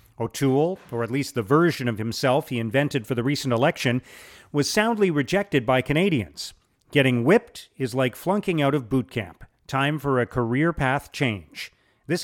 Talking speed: 170 wpm